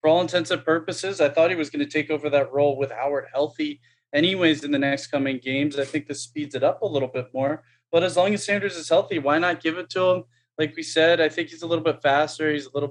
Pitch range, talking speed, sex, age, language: 135-160 Hz, 280 wpm, male, 20-39, English